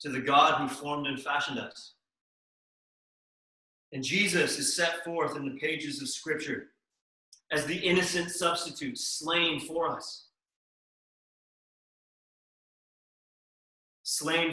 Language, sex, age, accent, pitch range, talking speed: English, male, 30-49, American, 135-170 Hz, 105 wpm